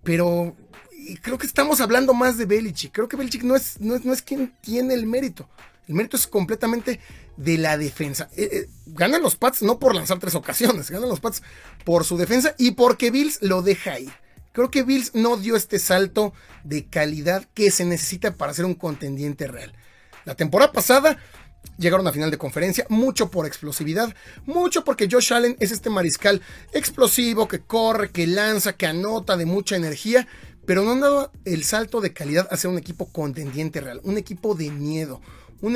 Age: 30-49